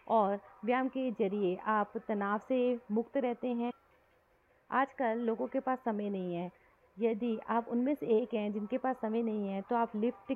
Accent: native